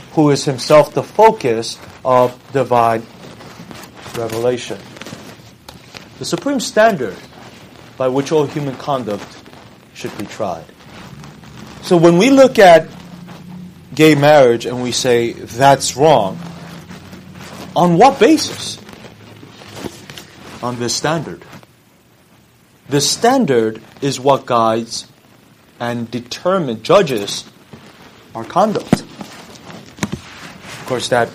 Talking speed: 95 wpm